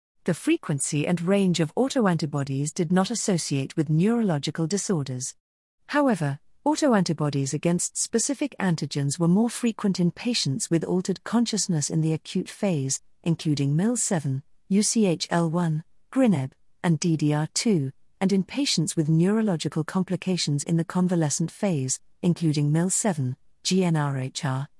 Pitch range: 155-200 Hz